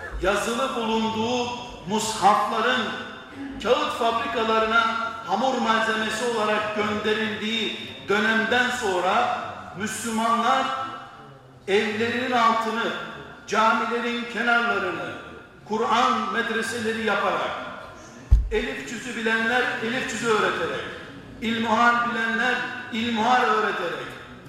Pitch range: 215-245 Hz